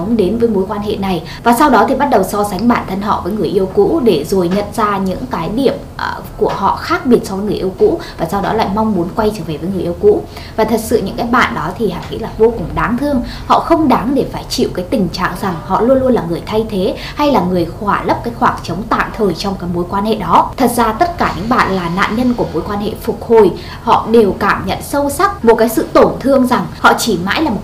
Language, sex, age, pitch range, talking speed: Vietnamese, female, 20-39, 200-265 Hz, 285 wpm